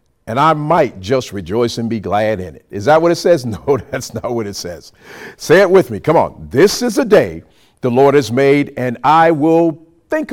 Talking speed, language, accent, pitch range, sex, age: 225 wpm, English, American, 120-165 Hz, male, 50-69